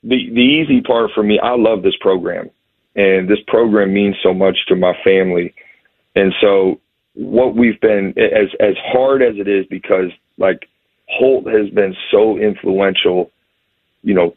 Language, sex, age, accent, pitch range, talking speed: English, male, 40-59, American, 95-115 Hz, 165 wpm